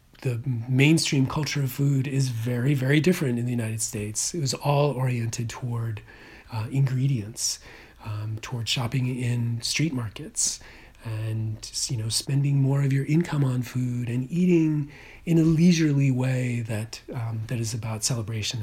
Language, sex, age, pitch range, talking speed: English, male, 40-59, 110-135 Hz, 155 wpm